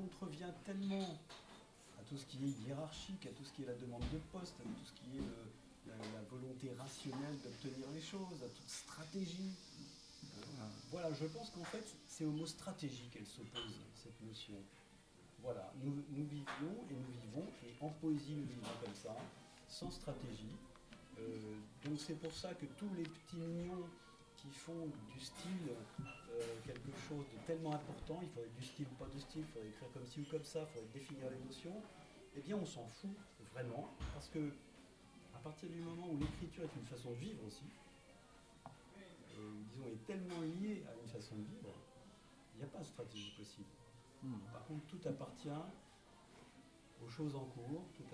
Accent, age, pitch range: French, 40-59, 120-160 Hz